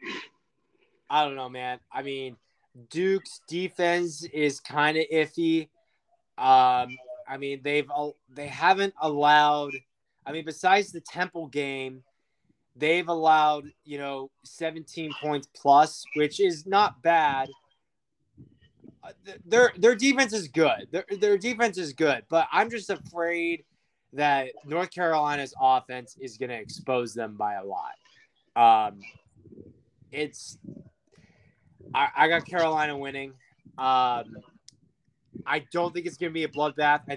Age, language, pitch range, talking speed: 20-39, English, 130-165 Hz, 130 wpm